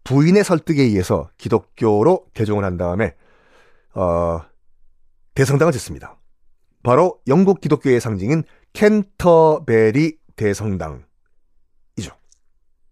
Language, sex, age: Korean, male, 40-59